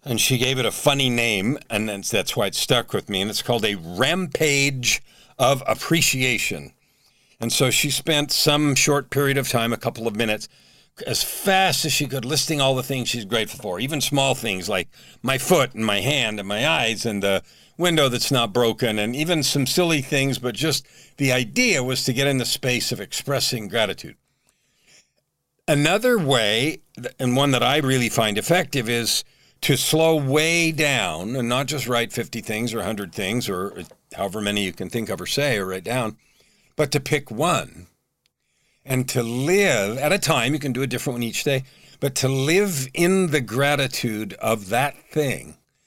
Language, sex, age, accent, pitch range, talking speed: English, male, 50-69, American, 115-145 Hz, 190 wpm